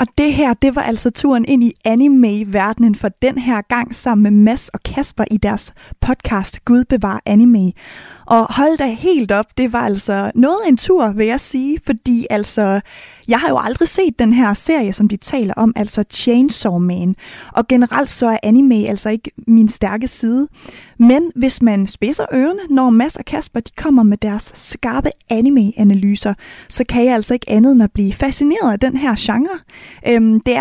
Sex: female